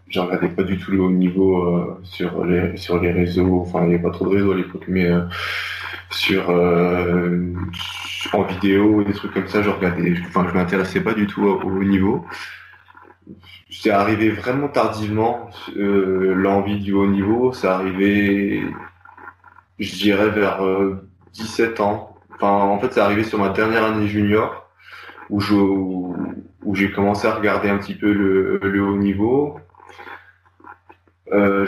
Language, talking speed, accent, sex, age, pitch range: French, 165 wpm, French, male, 20-39, 90-105 Hz